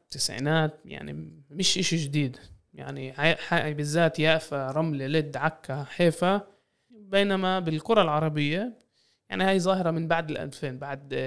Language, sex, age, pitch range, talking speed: Arabic, male, 20-39, 140-170 Hz, 115 wpm